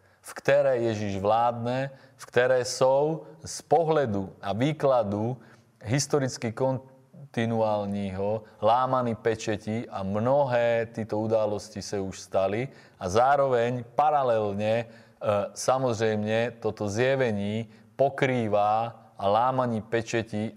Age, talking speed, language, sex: 30-49, 90 wpm, Czech, male